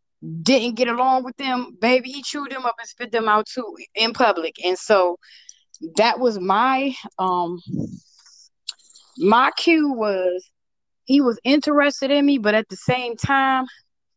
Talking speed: 155 wpm